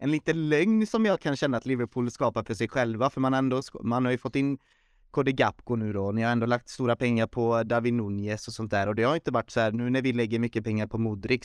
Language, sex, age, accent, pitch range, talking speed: Swedish, male, 30-49, native, 110-125 Hz, 275 wpm